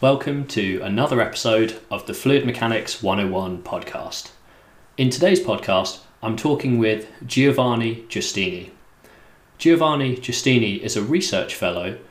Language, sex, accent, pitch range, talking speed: English, male, British, 100-125 Hz, 120 wpm